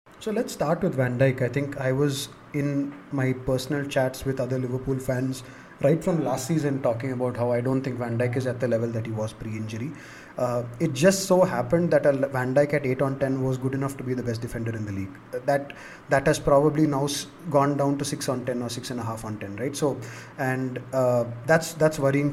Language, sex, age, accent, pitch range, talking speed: English, male, 20-39, Indian, 130-165 Hz, 240 wpm